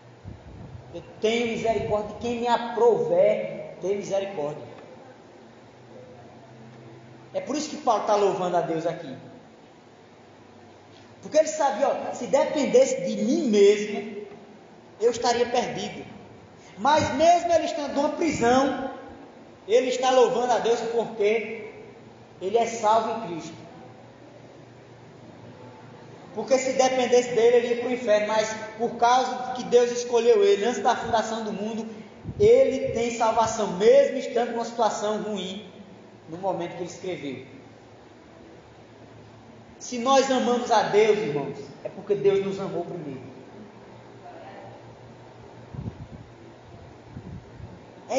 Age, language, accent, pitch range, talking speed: 20-39, Portuguese, Brazilian, 150-250 Hz, 120 wpm